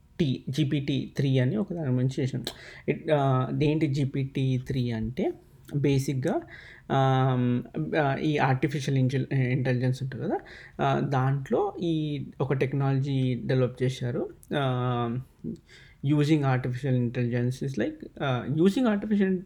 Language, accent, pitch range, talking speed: Telugu, native, 130-155 Hz, 95 wpm